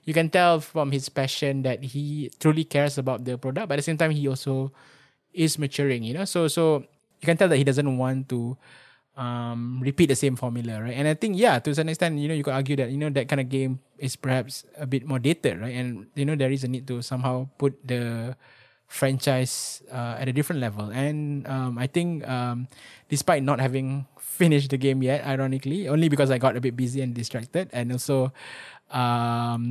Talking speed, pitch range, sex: 220 wpm, 125-145 Hz, male